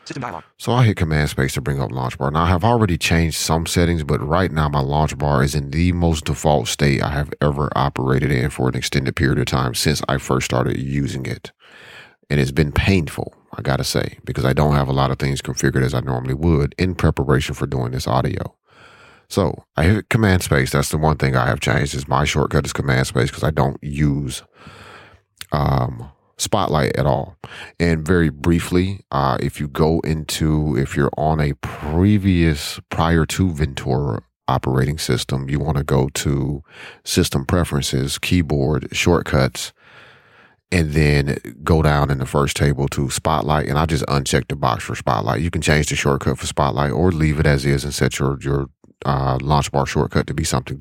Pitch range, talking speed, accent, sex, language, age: 70-80 Hz, 195 wpm, American, male, English, 30-49